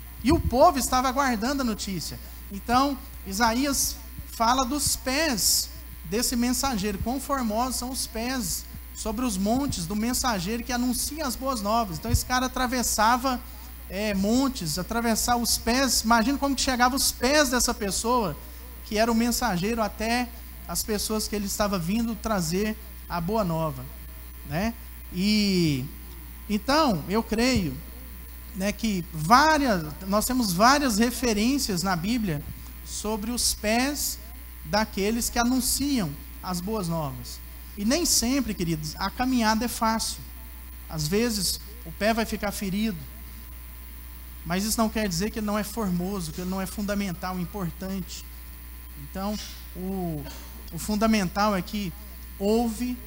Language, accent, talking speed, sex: Portuguese, Brazilian, 135 wpm, male